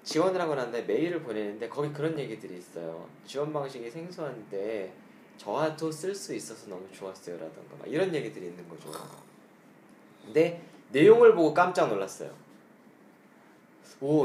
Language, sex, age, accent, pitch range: Korean, male, 20-39, native, 120-200 Hz